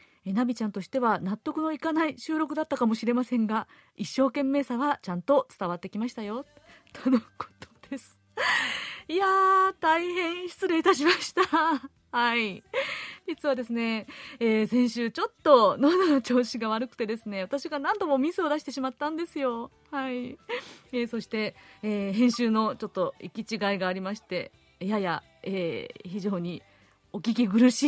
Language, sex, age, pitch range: Japanese, female, 30-49, 205-310 Hz